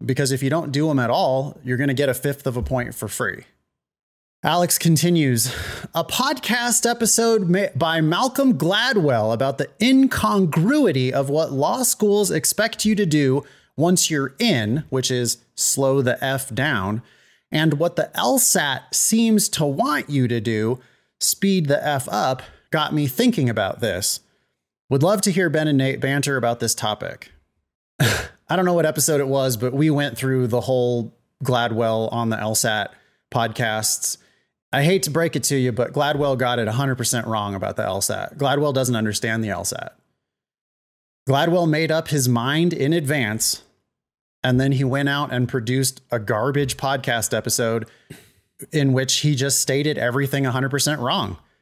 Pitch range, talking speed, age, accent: 125-165 Hz, 165 wpm, 30-49, American